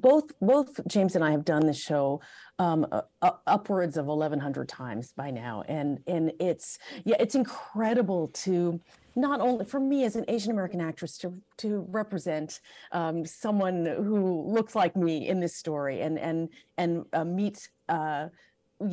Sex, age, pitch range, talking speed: female, 40-59, 160-210 Hz, 170 wpm